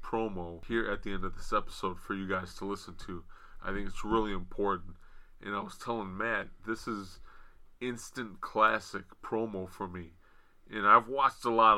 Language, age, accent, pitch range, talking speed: English, 30-49, American, 95-115 Hz, 185 wpm